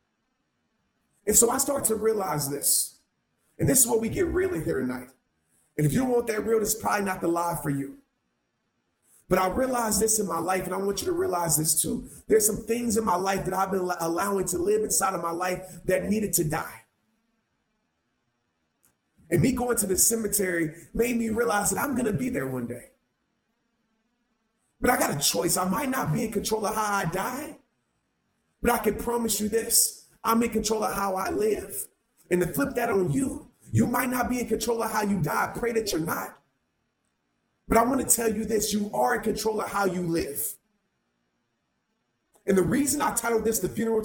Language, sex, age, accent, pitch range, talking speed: English, male, 30-49, American, 175-235 Hz, 210 wpm